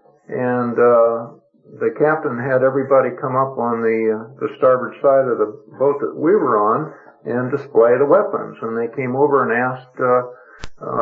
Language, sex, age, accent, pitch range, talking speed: English, male, 50-69, American, 115-145 Hz, 180 wpm